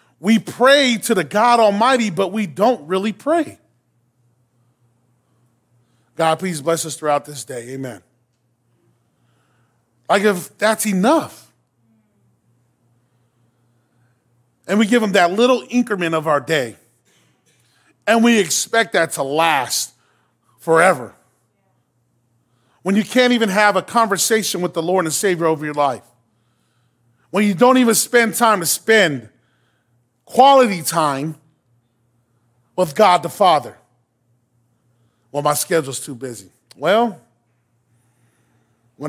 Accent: American